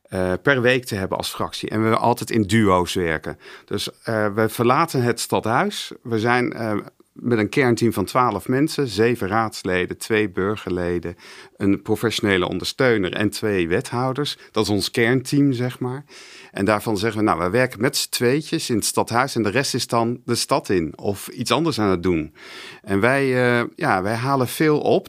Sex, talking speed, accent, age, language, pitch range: male, 190 wpm, Dutch, 50-69, Dutch, 105-140 Hz